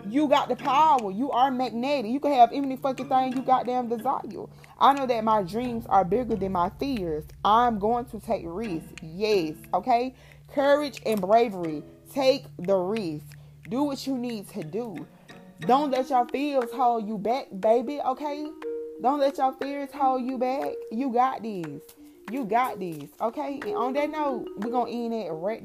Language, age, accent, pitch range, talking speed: English, 20-39, American, 185-245 Hz, 180 wpm